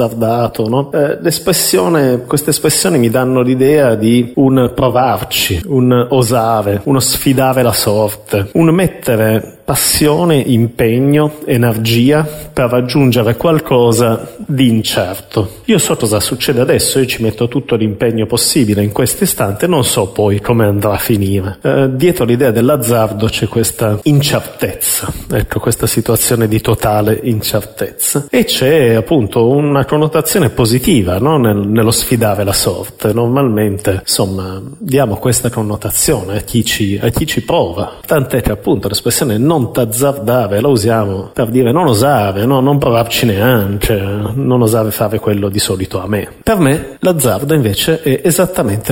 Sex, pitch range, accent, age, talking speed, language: male, 110-130 Hz, native, 30-49, 140 wpm, Italian